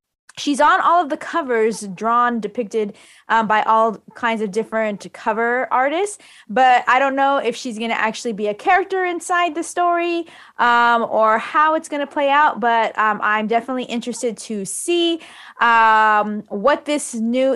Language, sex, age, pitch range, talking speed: English, female, 20-39, 220-285 Hz, 170 wpm